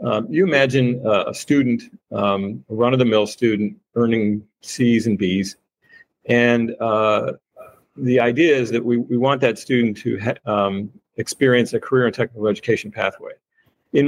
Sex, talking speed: male, 155 wpm